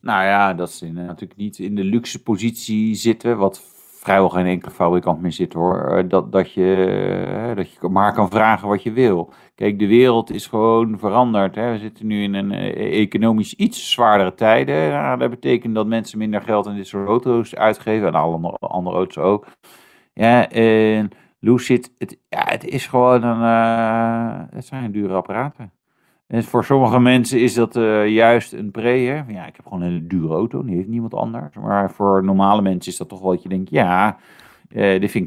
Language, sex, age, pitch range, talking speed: Dutch, male, 50-69, 95-115 Hz, 195 wpm